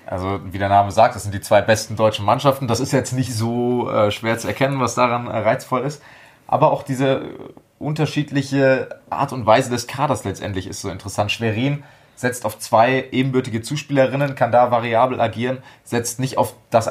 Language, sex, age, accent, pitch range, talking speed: German, male, 30-49, German, 105-130 Hz, 190 wpm